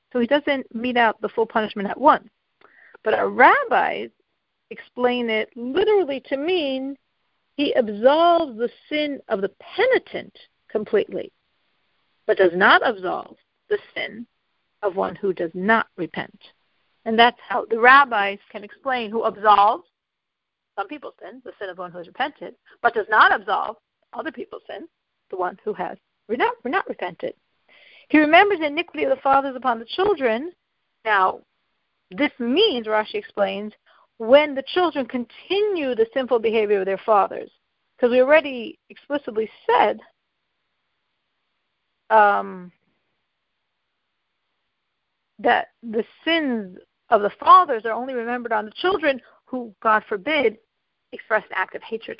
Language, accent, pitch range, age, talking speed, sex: English, American, 215-300 Hz, 50-69, 140 wpm, female